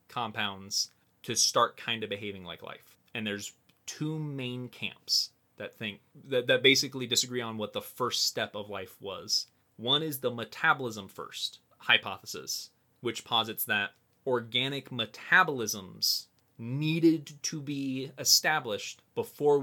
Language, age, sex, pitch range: English, 30-49, male, 110-130 Hz